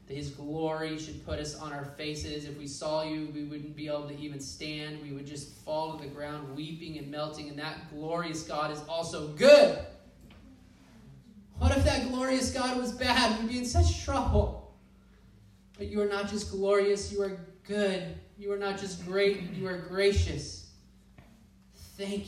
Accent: American